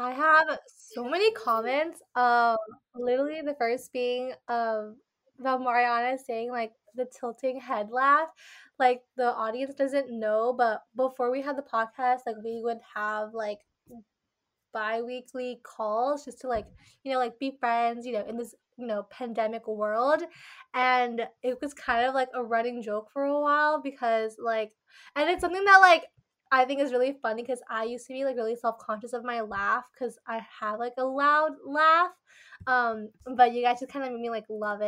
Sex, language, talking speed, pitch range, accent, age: female, English, 180 wpm, 225-265 Hz, American, 20-39